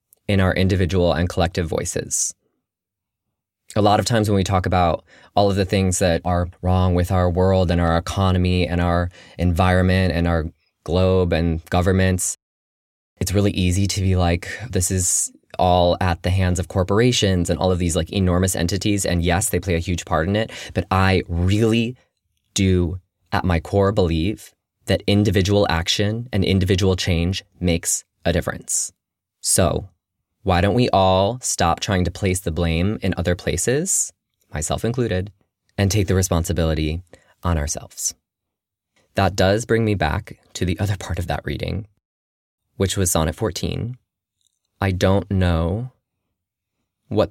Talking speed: 155 wpm